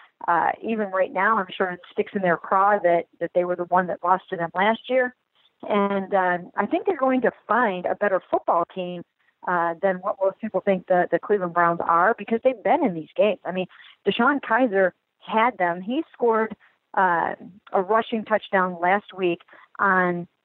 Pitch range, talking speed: 185-220 Hz, 195 wpm